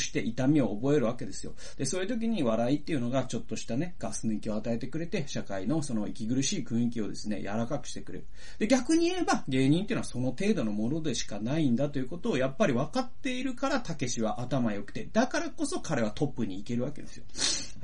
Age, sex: 30-49, male